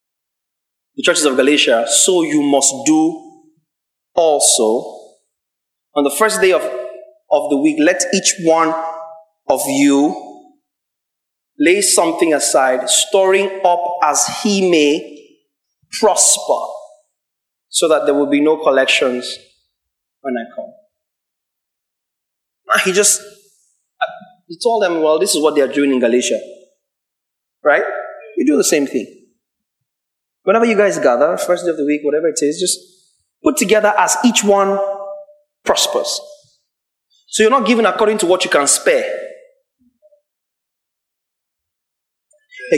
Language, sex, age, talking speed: English, male, 30-49, 130 wpm